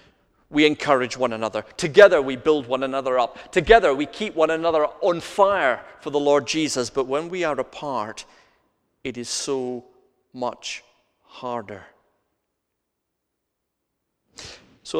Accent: British